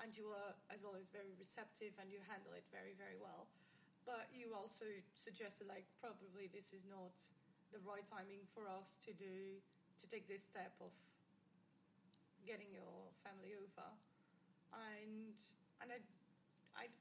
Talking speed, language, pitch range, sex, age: 150 wpm, English, 195-235 Hz, female, 30-49